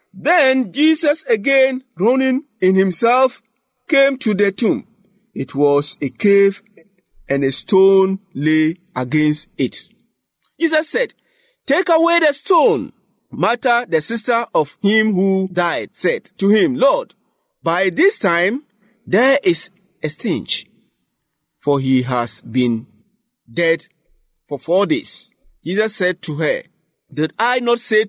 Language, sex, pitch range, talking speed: English, male, 155-225 Hz, 130 wpm